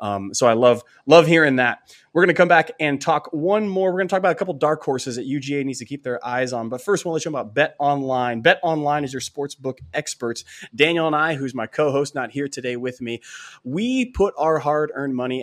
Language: English